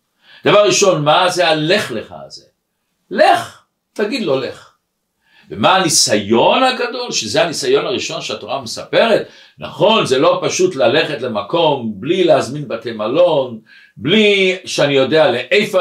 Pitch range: 175-210 Hz